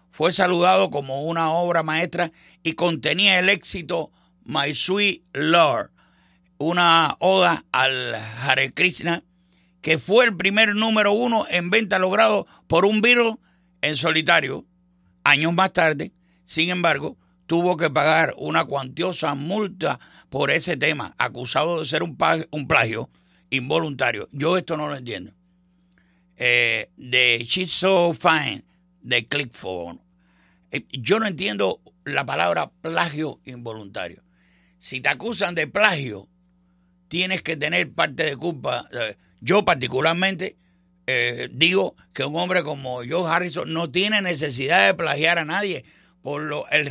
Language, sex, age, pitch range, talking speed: English, male, 60-79, 135-180 Hz, 135 wpm